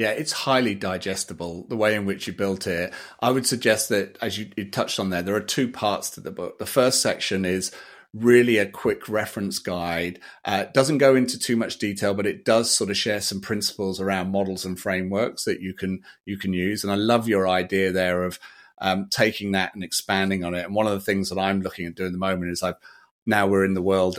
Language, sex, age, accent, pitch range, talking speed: English, male, 40-59, British, 90-105 Hz, 240 wpm